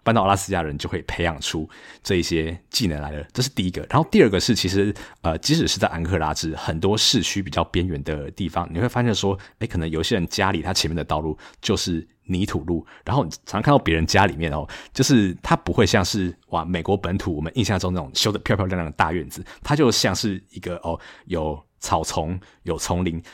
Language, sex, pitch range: Chinese, male, 85-105 Hz